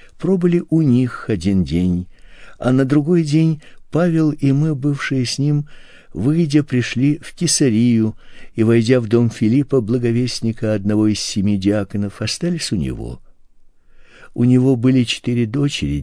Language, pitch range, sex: Russian, 100-125 Hz, male